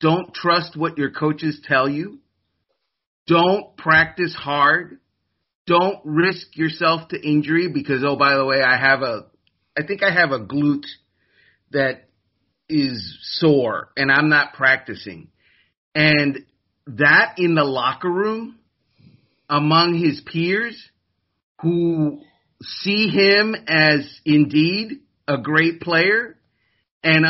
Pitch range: 145-175 Hz